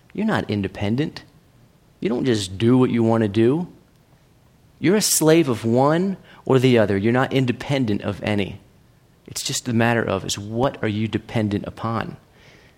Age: 30-49